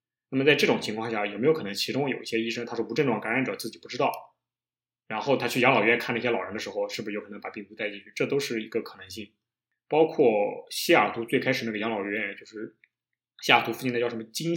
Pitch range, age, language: 115-130 Hz, 20-39, Chinese